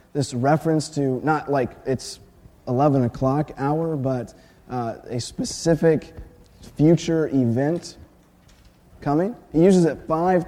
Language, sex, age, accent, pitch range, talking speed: English, male, 30-49, American, 125-160 Hz, 115 wpm